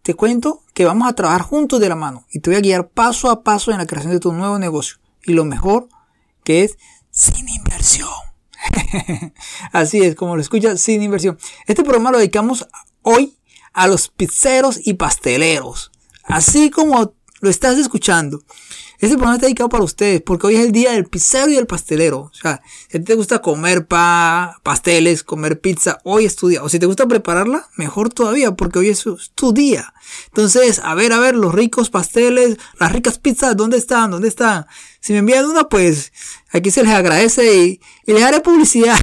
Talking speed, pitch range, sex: 190 wpm, 180-235 Hz, male